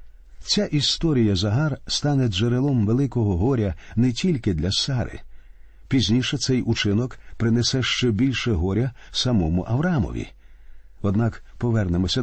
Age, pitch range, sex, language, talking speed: 50-69, 85-130 Hz, male, Ukrainian, 110 wpm